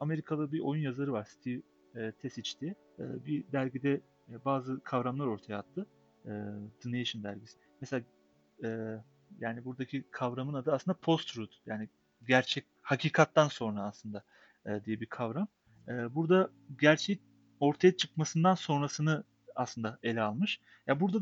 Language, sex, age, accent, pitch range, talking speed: Turkish, male, 40-59, native, 120-165 Hz, 140 wpm